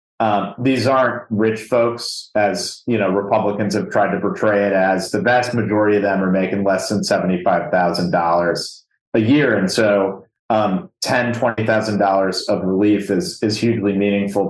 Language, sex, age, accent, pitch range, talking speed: English, male, 30-49, American, 95-110 Hz, 155 wpm